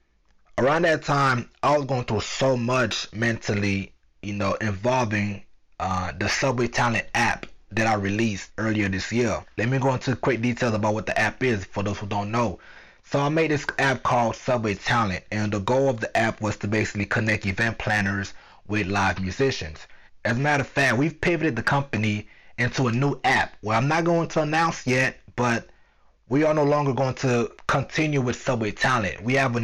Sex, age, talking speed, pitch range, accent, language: male, 30-49, 195 wpm, 105-135 Hz, American, English